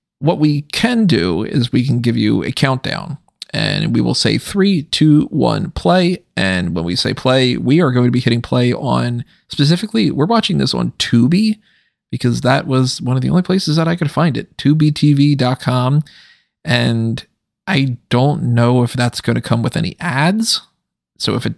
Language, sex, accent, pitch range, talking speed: English, male, American, 120-160 Hz, 185 wpm